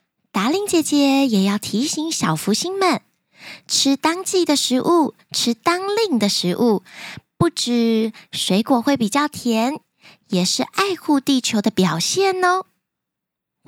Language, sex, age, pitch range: Chinese, female, 20-39, 210-325 Hz